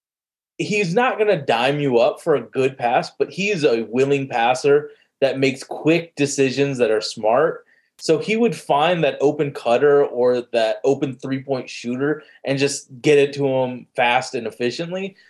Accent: American